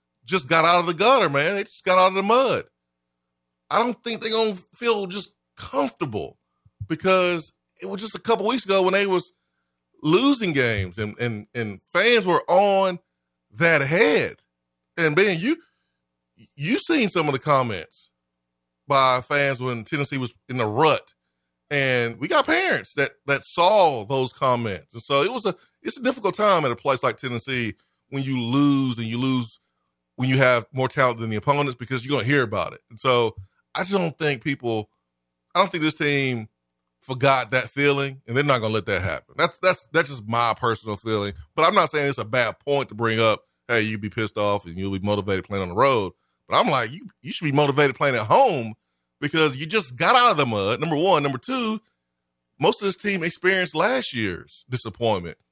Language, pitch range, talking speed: English, 105-165 Hz, 205 wpm